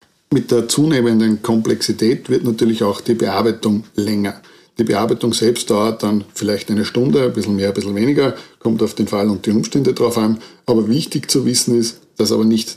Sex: male